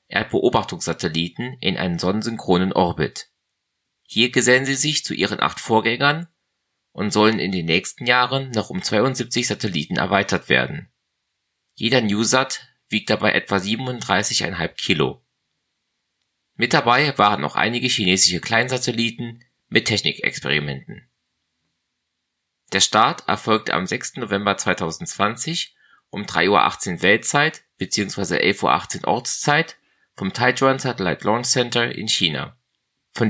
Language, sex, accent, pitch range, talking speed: German, male, German, 100-125 Hz, 115 wpm